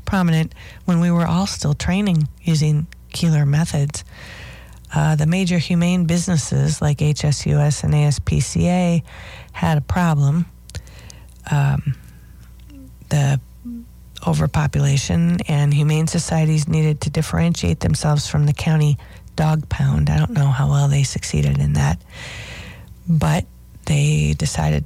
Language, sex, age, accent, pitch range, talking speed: English, female, 40-59, American, 110-160 Hz, 120 wpm